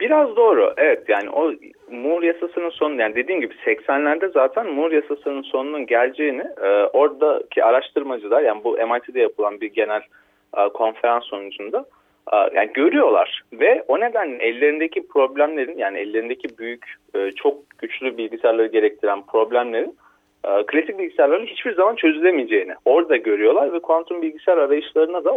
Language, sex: Turkish, male